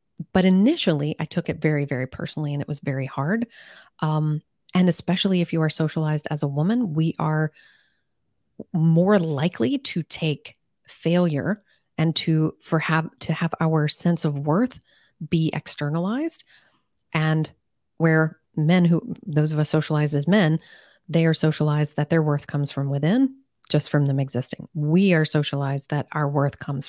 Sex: female